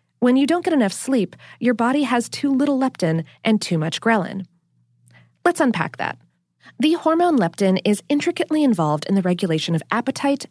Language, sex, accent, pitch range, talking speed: English, female, American, 170-265 Hz, 170 wpm